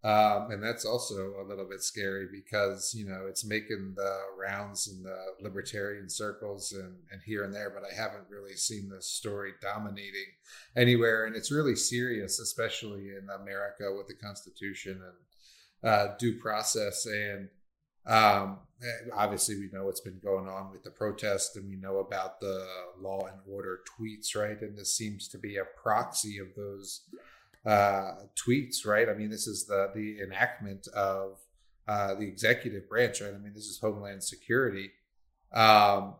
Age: 30-49